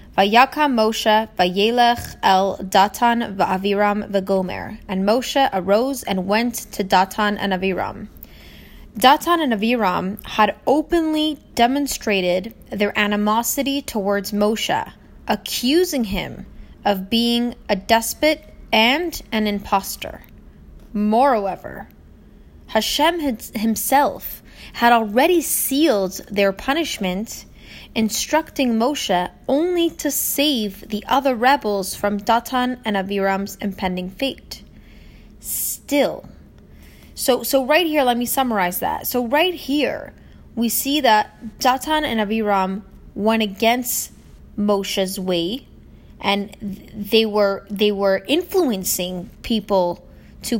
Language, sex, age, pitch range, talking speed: English, female, 20-39, 200-265 Hz, 100 wpm